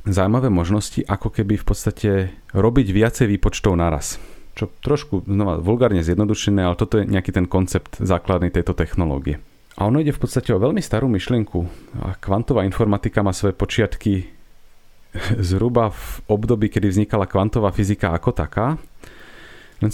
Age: 30-49